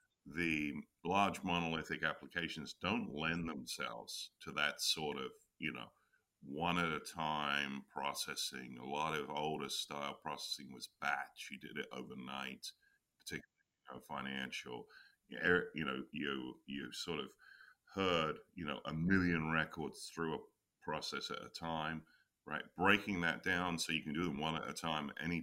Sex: male